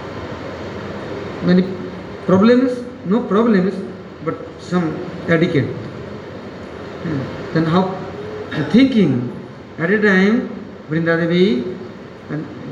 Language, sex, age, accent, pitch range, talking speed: English, male, 60-79, Indian, 155-185 Hz, 70 wpm